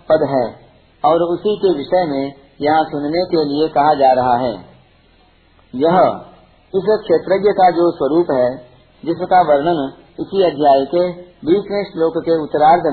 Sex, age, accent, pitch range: male, 50-69, native, 135-180 Hz